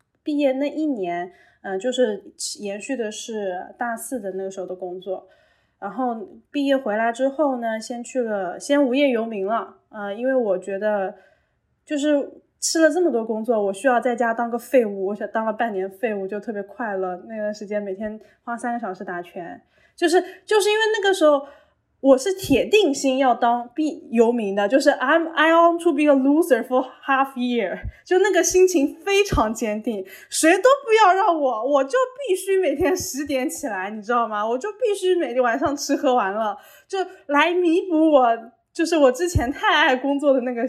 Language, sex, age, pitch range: Chinese, female, 20-39, 220-310 Hz